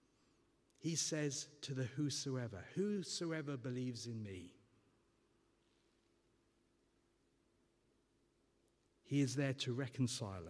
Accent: British